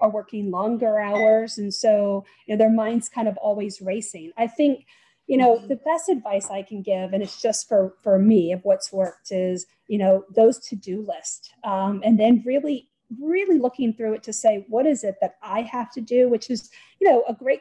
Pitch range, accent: 210-270 Hz, American